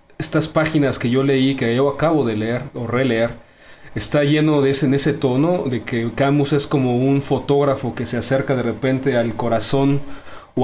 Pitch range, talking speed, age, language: 120-145 Hz, 185 wpm, 30-49, Spanish